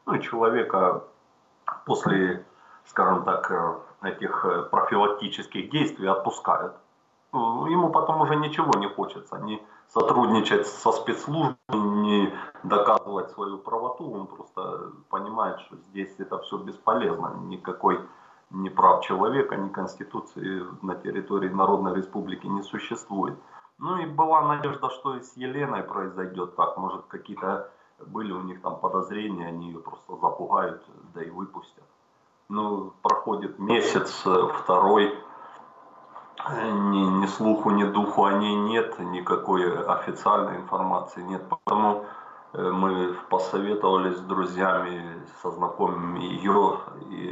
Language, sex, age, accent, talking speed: Ukrainian, male, 30-49, native, 115 wpm